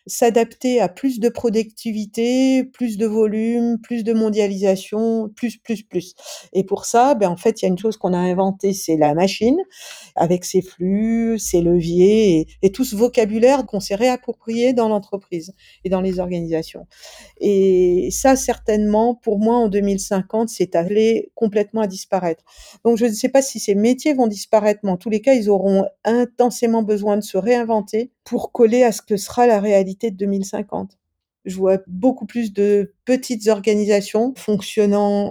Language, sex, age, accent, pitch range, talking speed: French, female, 50-69, French, 195-230 Hz, 175 wpm